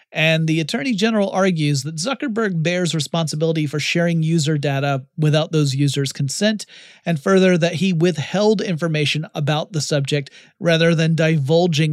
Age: 30-49